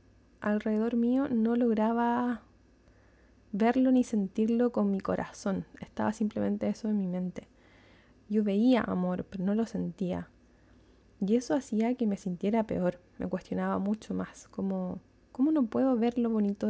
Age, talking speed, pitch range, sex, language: 20-39, 145 wpm, 185-230 Hz, female, Spanish